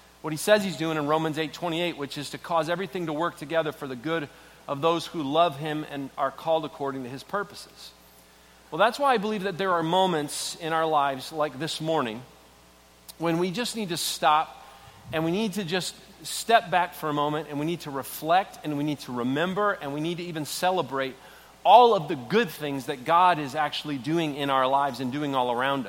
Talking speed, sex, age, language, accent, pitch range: 225 wpm, male, 40-59, English, American, 150-200 Hz